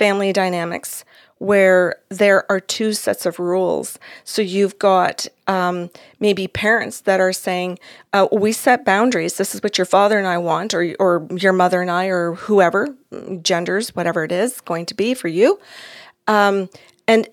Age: 40-59